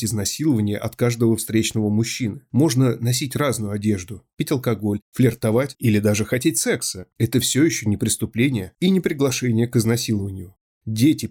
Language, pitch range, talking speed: Russian, 110-135 Hz, 145 wpm